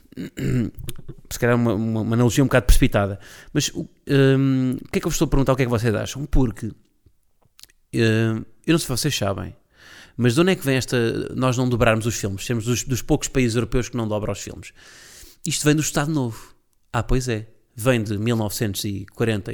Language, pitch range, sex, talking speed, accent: Portuguese, 105-140 Hz, male, 210 wpm, Portuguese